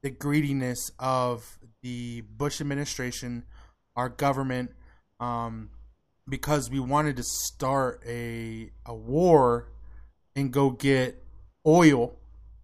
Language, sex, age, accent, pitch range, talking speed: English, male, 20-39, American, 115-140 Hz, 100 wpm